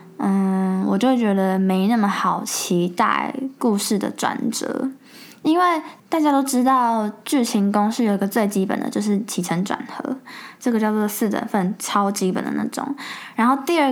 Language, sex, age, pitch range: Chinese, female, 10-29, 185-235 Hz